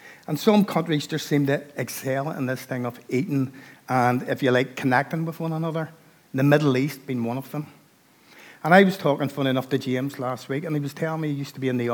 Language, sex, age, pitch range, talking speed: English, male, 60-79, 120-150 Hz, 240 wpm